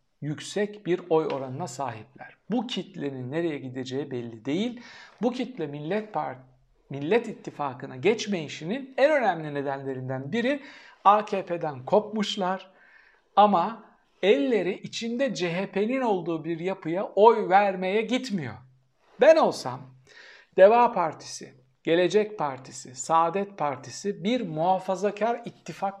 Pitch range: 150-210 Hz